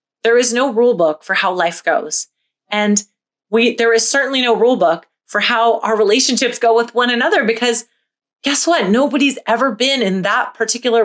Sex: female